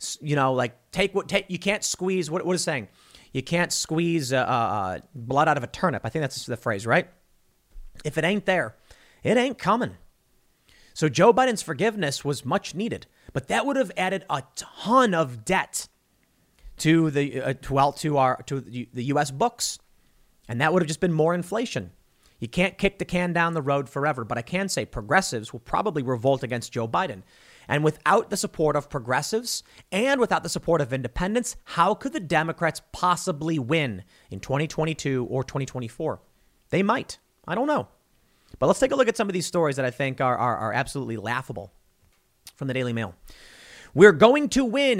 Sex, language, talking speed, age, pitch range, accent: male, English, 190 wpm, 30-49, 130-185 Hz, American